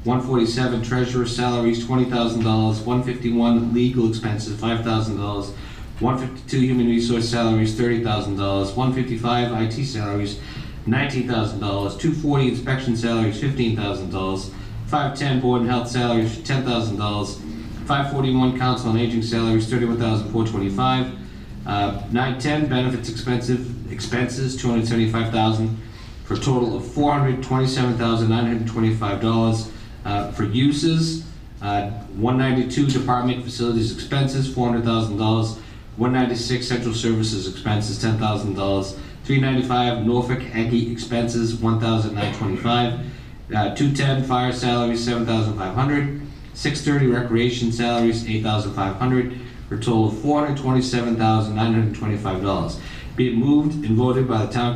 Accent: American